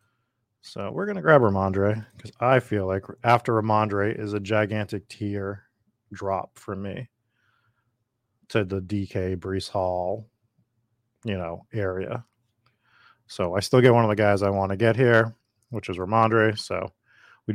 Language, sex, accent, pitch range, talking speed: English, male, American, 100-120 Hz, 155 wpm